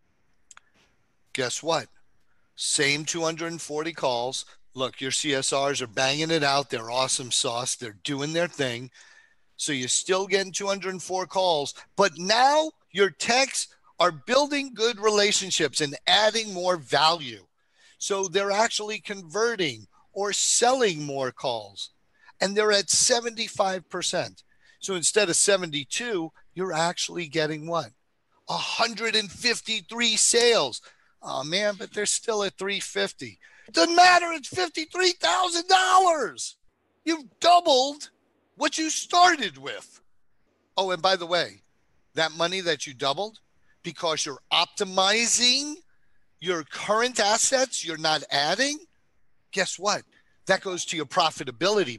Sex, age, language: male, 50-69, English